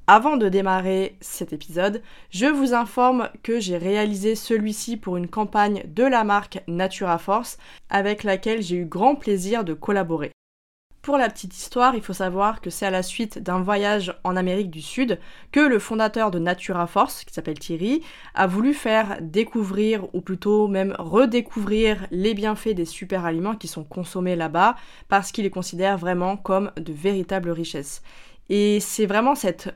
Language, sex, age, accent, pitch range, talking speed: French, female, 20-39, French, 180-220 Hz, 170 wpm